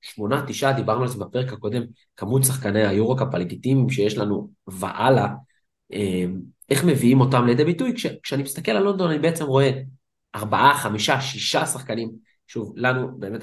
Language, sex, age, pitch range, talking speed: Hebrew, male, 20-39, 105-135 Hz, 145 wpm